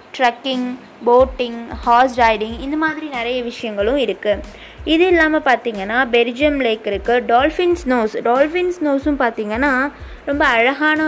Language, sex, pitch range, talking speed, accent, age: Tamil, female, 235-305 Hz, 120 wpm, native, 20-39